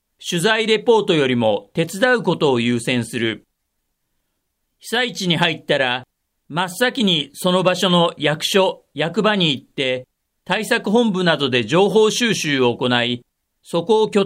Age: 40-59